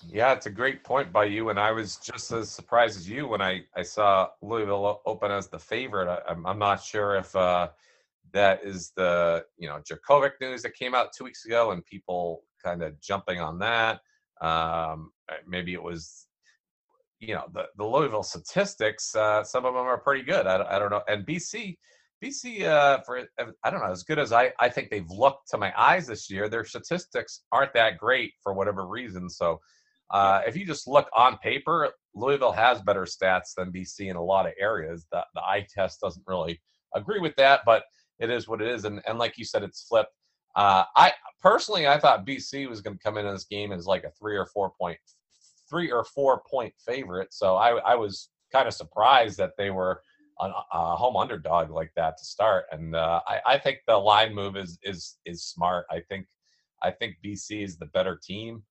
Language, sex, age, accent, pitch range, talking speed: English, male, 40-59, American, 95-120 Hz, 210 wpm